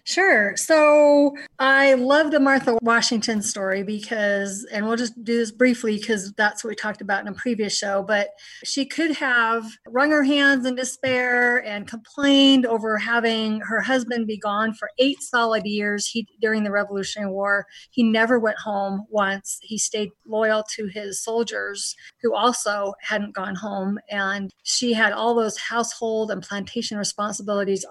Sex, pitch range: female, 205-235 Hz